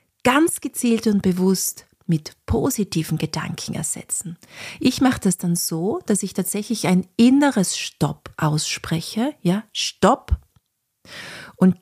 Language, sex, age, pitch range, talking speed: German, female, 40-59, 175-225 Hz, 115 wpm